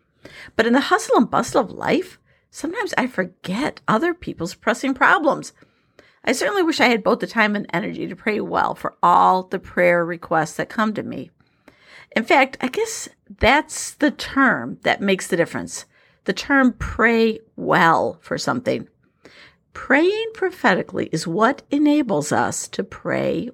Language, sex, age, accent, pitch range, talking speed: English, female, 50-69, American, 175-270 Hz, 160 wpm